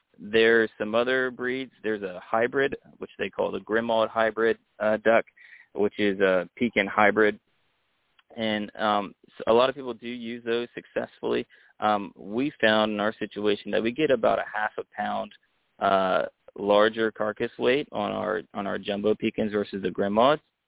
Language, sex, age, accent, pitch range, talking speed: English, male, 20-39, American, 105-115 Hz, 170 wpm